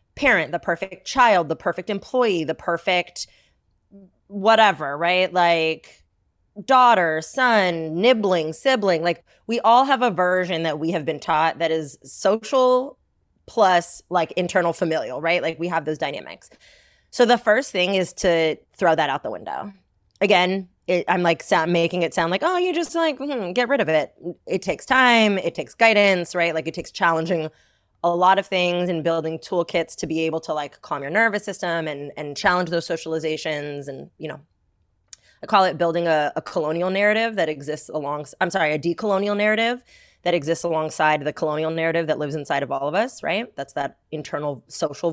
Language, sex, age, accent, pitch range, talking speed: English, female, 20-39, American, 165-205 Hz, 180 wpm